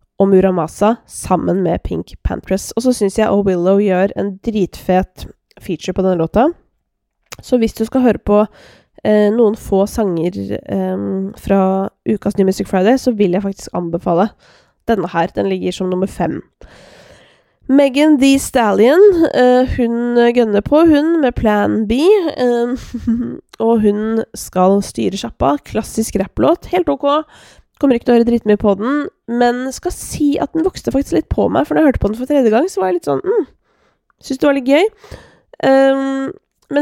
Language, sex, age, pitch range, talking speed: English, female, 20-39, 195-260 Hz, 175 wpm